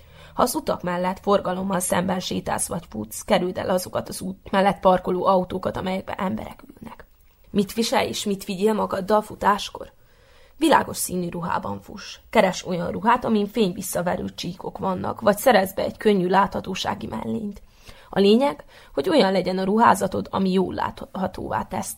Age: 20-39